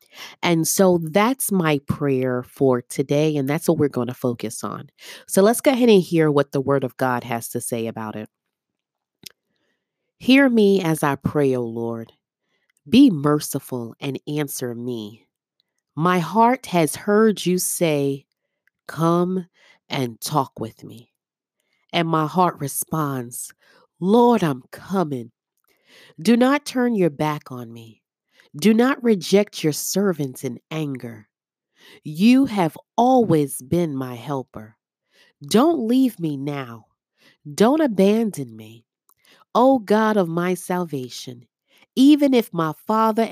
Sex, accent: female, American